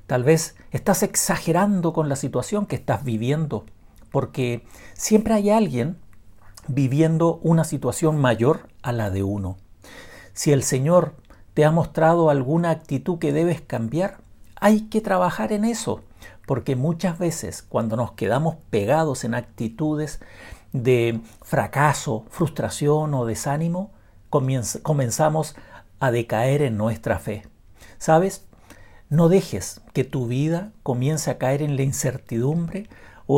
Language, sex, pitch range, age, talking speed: Spanish, male, 115-165 Hz, 50-69, 130 wpm